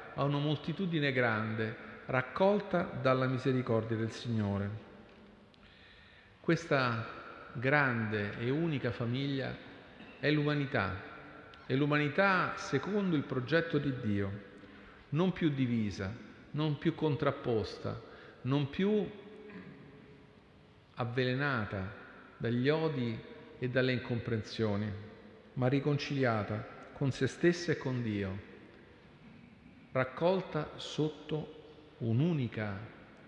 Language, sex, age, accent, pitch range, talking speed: Italian, male, 50-69, native, 110-145 Hz, 85 wpm